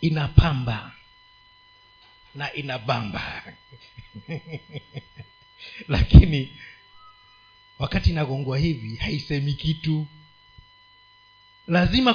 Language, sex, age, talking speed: Swahili, male, 50-69, 50 wpm